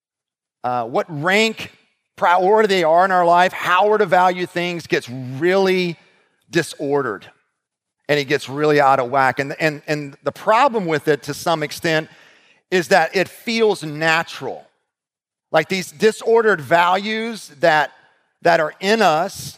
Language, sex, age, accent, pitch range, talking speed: English, male, 40-59, American, 155-200 Hz, 145 wpm